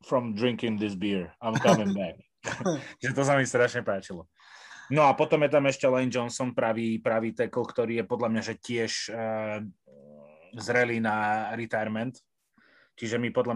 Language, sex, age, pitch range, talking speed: Slovak, male, 20-39, 110-130 Hz, 150 wpm